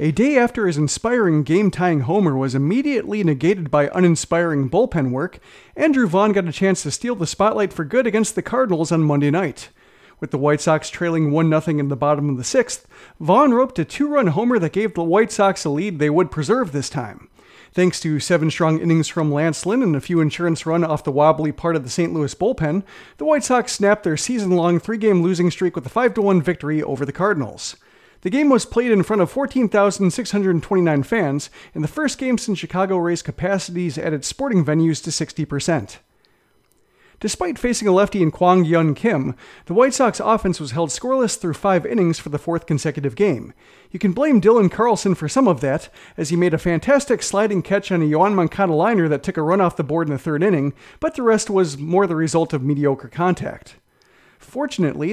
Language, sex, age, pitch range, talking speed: English, male, 40-59, 155-205 Hz, 205 wpm